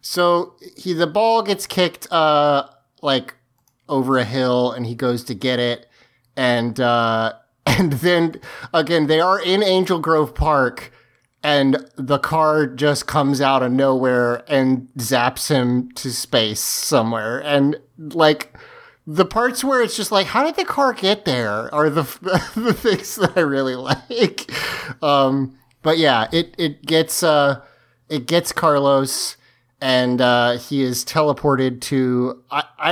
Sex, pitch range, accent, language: male, 120-155 Hz, American, English